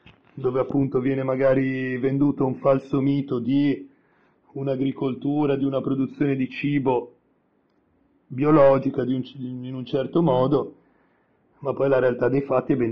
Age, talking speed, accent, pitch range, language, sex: 40-59, 140 wpm, native, 130-145 Hz, Italian, male